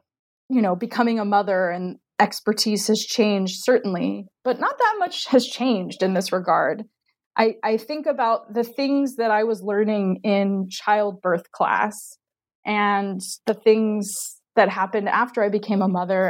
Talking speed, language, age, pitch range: 155 wpm, English, 20-39, 195-230 Hz